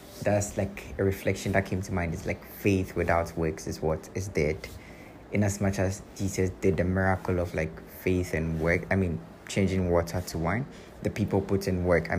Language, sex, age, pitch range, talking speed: English, male, 20-39, 90-105 Hz, 205 wpm